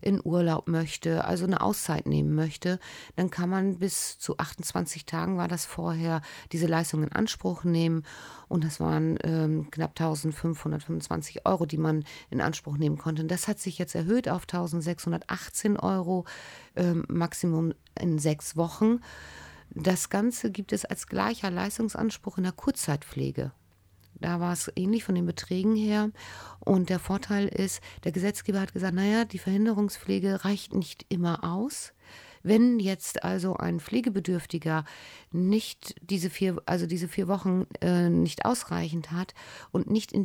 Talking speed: 150 wpm